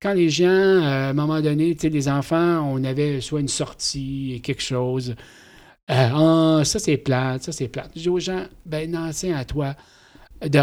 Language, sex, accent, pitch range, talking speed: French, male, Canadian, 125-145 Hz, 215 wpm